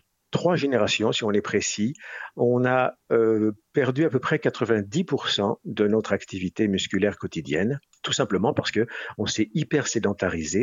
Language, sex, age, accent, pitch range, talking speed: French, male, 50-69, French, 100-140 Hz, 145 wpm